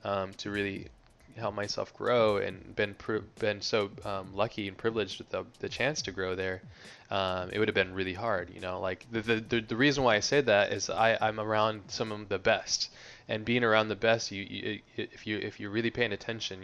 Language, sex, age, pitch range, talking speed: English, male, 20-39, 95-110 Hz, 220 wpm